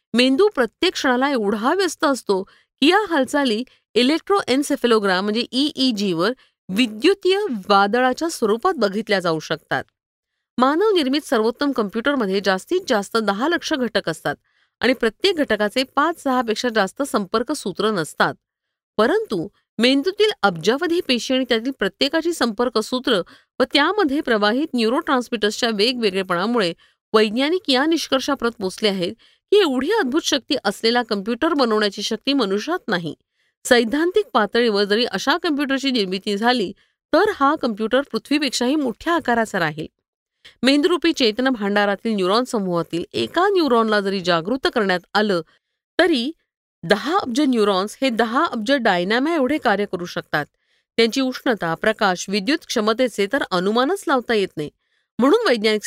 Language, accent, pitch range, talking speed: Marathi, native, 210-285 Hz, 105 wpm